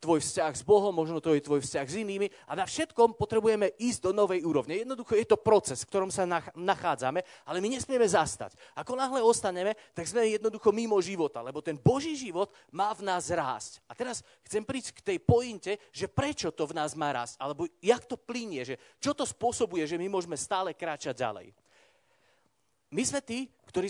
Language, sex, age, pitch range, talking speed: Slovak, male, 30-49, 160-225 Hz, 200 wpm